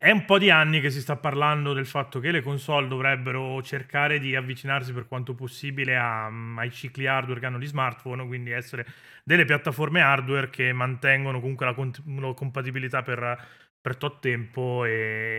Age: 30-49